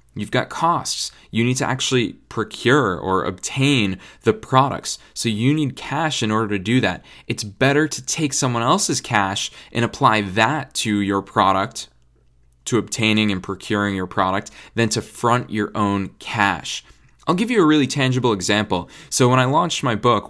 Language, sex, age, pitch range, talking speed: English, male, 20-39, 95-130 Hz, 175 wpm